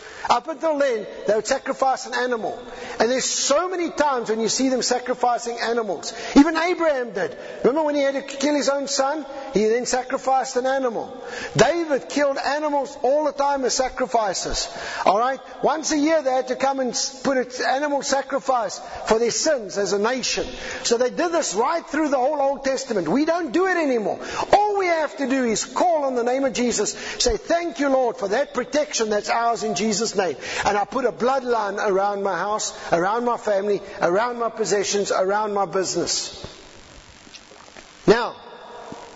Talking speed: 180 wpm